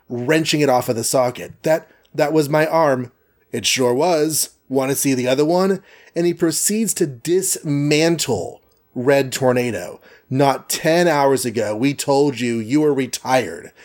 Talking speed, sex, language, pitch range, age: 160 wpm, male, English, 130-160 Hz, 30-49